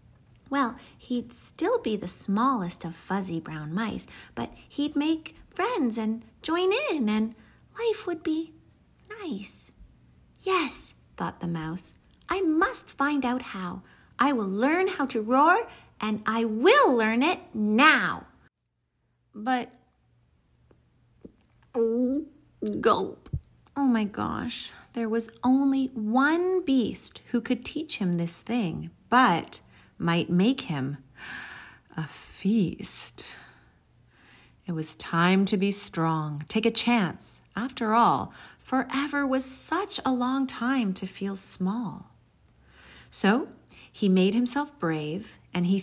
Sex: female